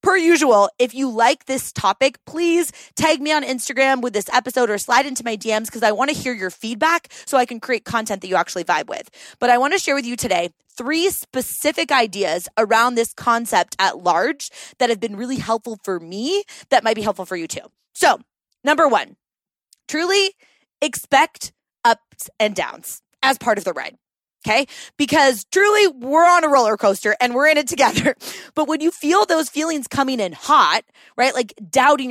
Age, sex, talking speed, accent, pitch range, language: 20-39, female, 195 wpm, American, 235-320 Hz, English